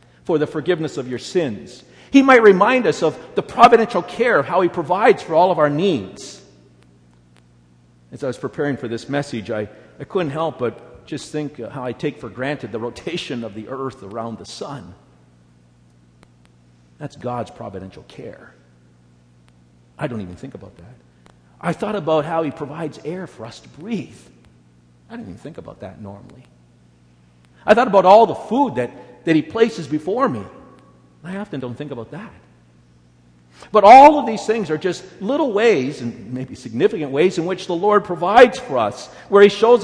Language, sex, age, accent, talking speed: English, male, 50-69, American, 180 wpm